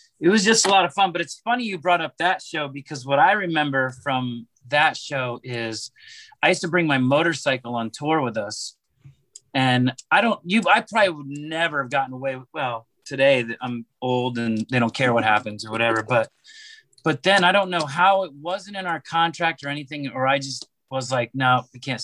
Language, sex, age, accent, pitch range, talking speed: English, male, 30-49, American, 130-180 Hz, 215 wpm